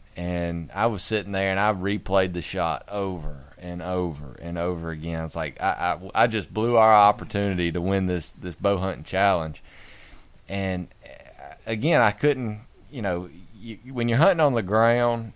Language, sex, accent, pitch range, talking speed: English, male, American, 90-105 Hz, 175 wpm